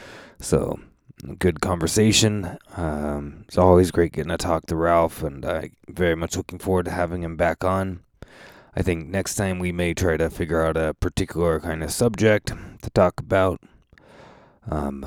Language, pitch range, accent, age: English, 80-100 Hz, American, 20-39